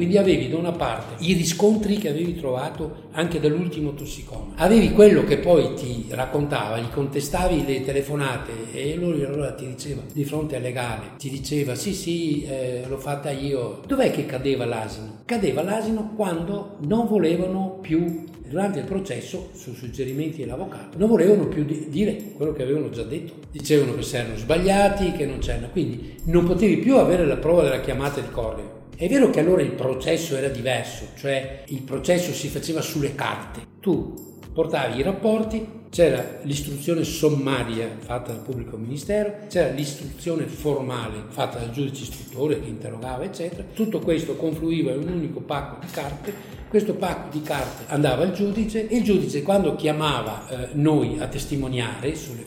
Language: Italian